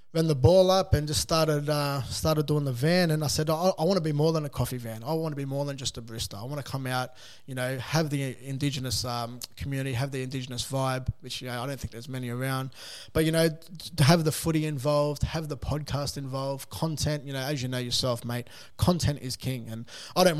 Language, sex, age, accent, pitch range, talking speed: English, male, 20-39, Australian, 130-155 Hz, 250 wpm